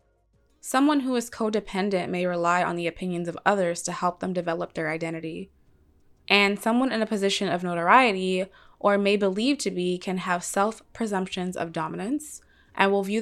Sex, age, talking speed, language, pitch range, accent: female, 20-39, 170 wpm, English, 180-210 Hz, American